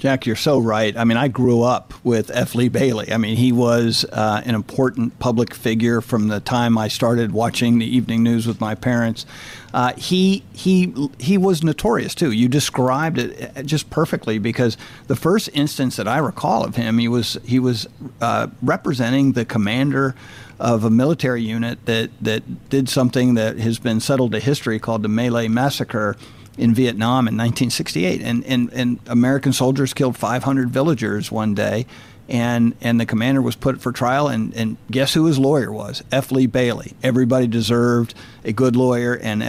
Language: English